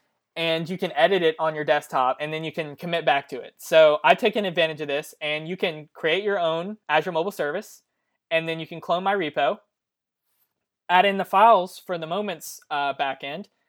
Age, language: 20-39, English